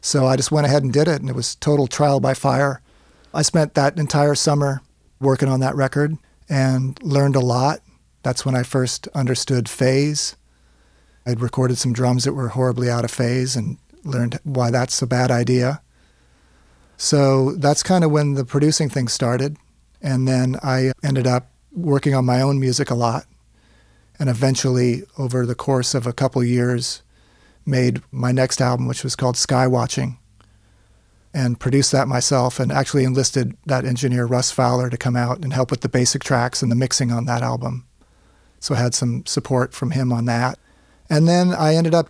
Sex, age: male, 40-59